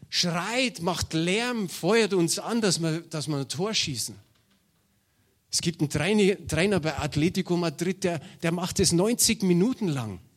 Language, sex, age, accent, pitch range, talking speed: German, male, 50-69, German, 135-185 Hz, 150 wpm